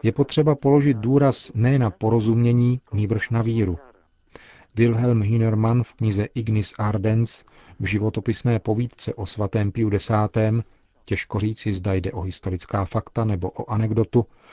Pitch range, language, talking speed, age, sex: 105-125 Hz, Czech, 135 wpm, 40-59, male